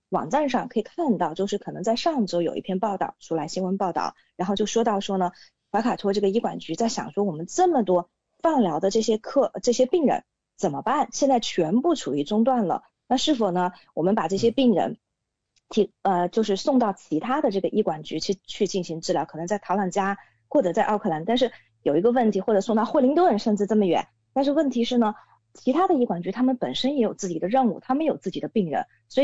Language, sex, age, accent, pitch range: English, female, 20-39, Chinese, 180-250 Hz